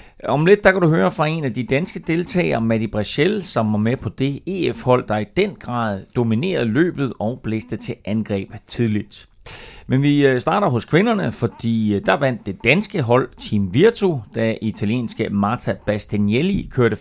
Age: 30-49